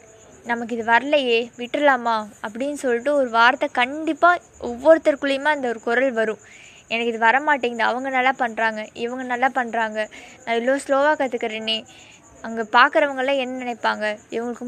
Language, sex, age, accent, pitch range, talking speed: Tamil, female, 20-39, native, 225-280 Hz, 135 wpm